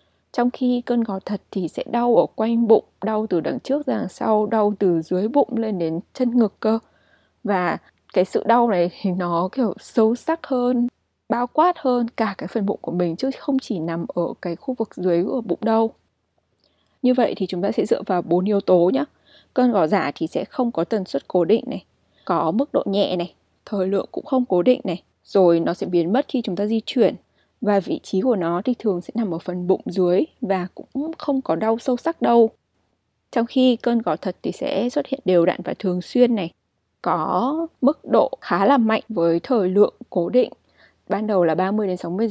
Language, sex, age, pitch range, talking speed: Vietnamese, female, 20-39, 180-245 Hz, 220 wpm